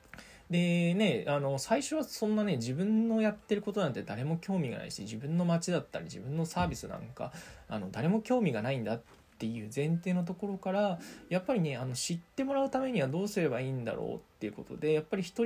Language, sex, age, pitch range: Japanese, male, 20-39, 120-185 Hz